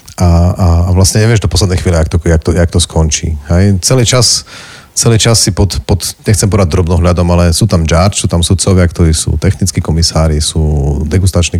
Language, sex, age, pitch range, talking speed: Slovak, male, 40-59, 80-95 Hz, 195 wpm